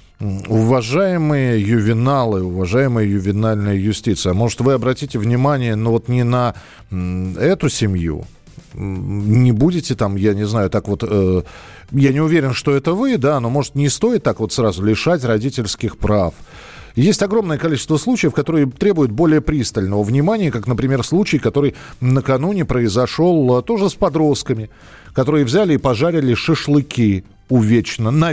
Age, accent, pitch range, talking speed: 40-59, native, 105-140 Hz, 135 wpm